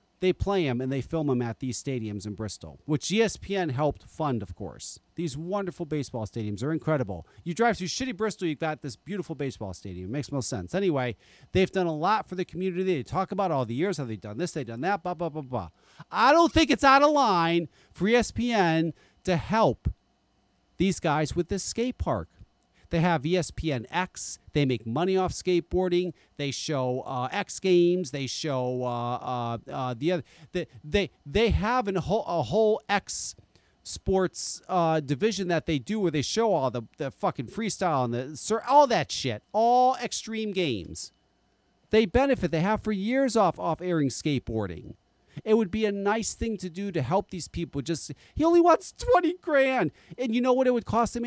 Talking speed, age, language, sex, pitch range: 200 wpm, 40-59, English, male, 130-205 Hz